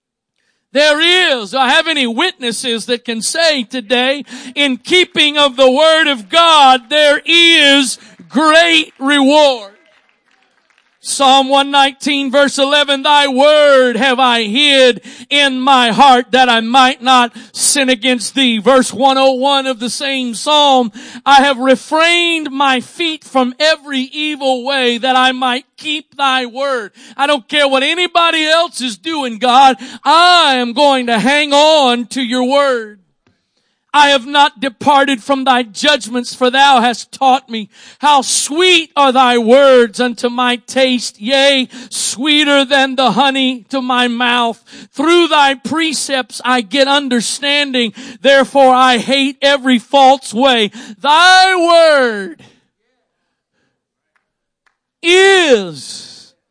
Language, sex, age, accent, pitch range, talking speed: English, male, 40-59, American, 250-285 Hz, 130 wpm